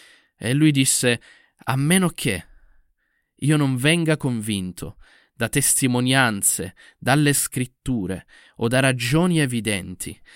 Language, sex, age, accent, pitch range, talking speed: Italian, male, 20-39, native, 110-145 Hz, 105 wpm